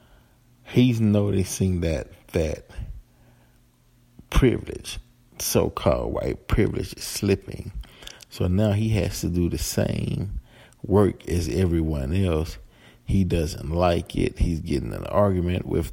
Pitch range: 80-100 Hz